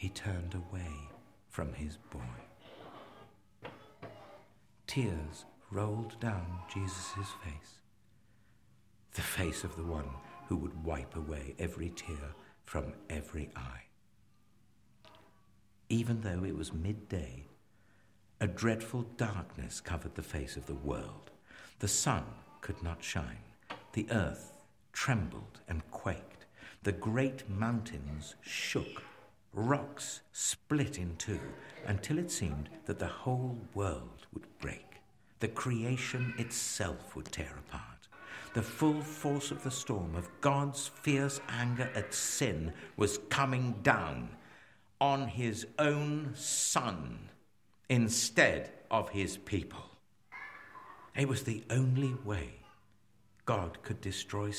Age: 60-79